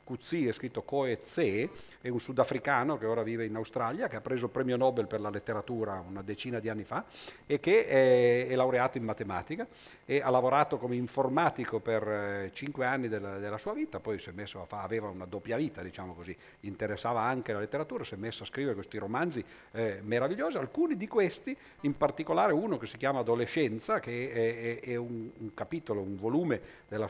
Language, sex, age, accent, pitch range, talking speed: Italian, male, 50-69, native, 105-130 Hz, 195 wpm